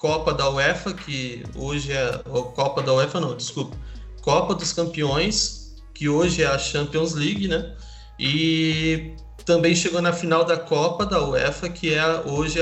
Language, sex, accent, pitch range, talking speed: Portuguese, male, Brazilian, 140-170 Hz, 165 wpm